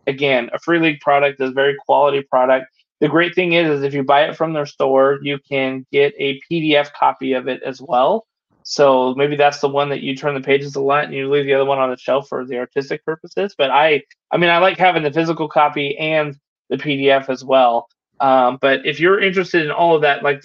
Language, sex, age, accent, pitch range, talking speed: English, male, 20-39, American, 135-155 Hz, 240 wpm